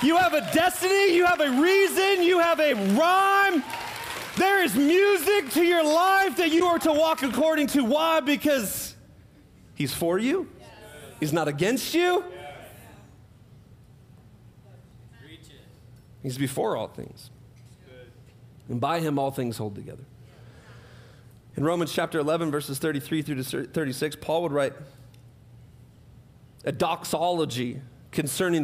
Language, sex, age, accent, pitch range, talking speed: English, male, 40-59, American, 125-170 Hz, 125 wpm